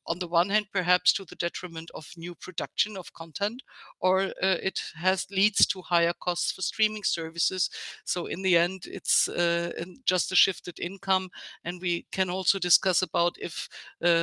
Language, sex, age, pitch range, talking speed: English, female, 60-79, 170-195 Hz, 175 wpm